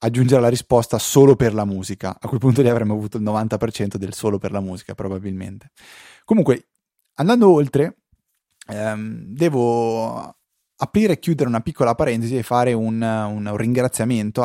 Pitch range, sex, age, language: 110-145 Hz, male, 20-39, Italian